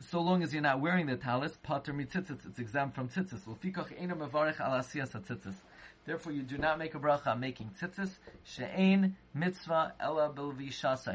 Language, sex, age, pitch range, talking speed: English, male, 30-49, 125-170 Hz, 120 wpm